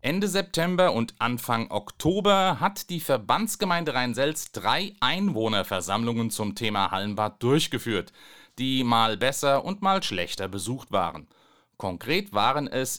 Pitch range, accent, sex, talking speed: 115-175 Hz, German, male, 120 wpm